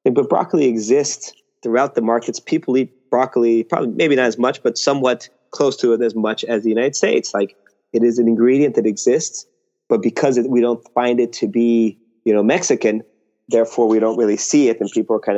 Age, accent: 30-49, American